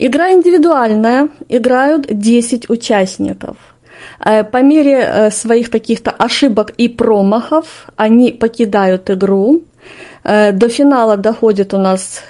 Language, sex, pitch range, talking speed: Russian, female, 220-275 Hz, 100 wpm